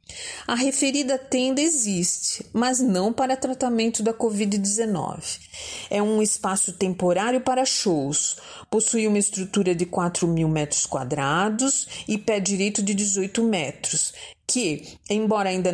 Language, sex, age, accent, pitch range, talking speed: Portuguese, female, 40-59, Brazilian, 185-235 Hz, 125 wpm